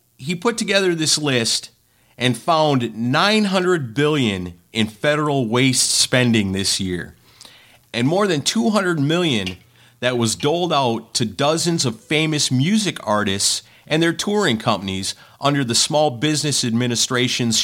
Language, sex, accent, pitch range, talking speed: English, male, American, 115-160 Hz, 135 wpm